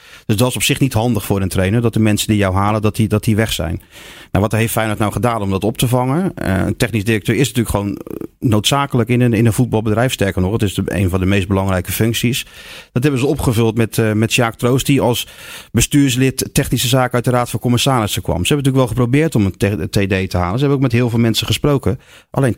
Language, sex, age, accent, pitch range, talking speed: Dutch, male, 40-59, Dutch, 100-125 Hz, 245 wpm